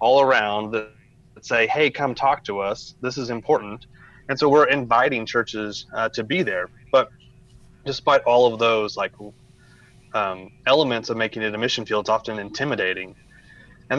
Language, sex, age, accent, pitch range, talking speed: English, male, 30-49, American, 110-130 Hz, 165 wpm